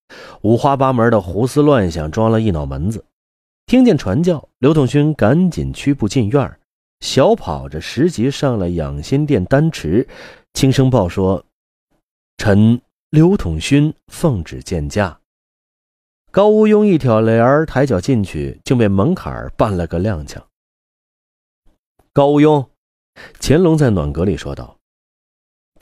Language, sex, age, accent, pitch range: Chinese, male, 30-49, native, 85-140 Hz